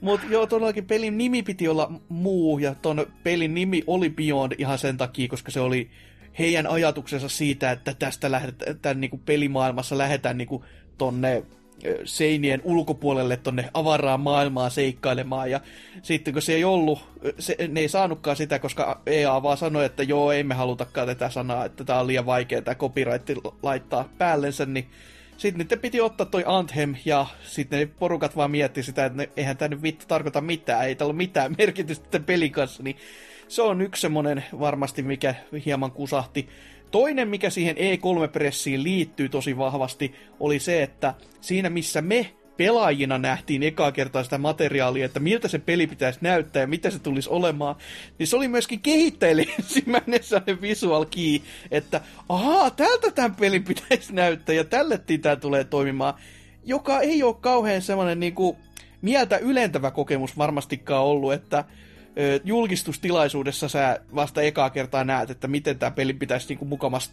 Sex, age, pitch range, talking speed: male, 20-39, 135-175 Hz, 160 wpm